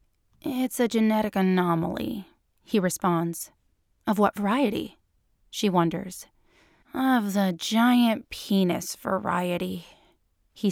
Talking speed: 95 wpm